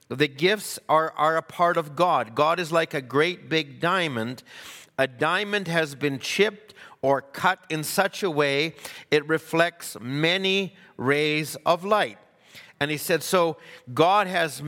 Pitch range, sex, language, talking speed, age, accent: 145-185 Hz, male, English, 155 wpm, 50-69, American